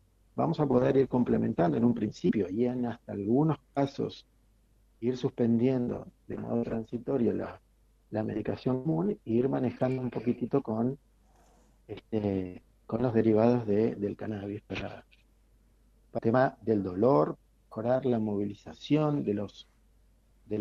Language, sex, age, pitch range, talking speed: Spanish, male, 50-69, 105-125 Hz, 135 wpm